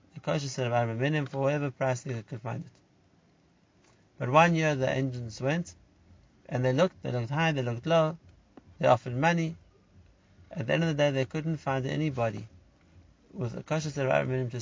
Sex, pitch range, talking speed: male, 115-150 Hz, 185 wpm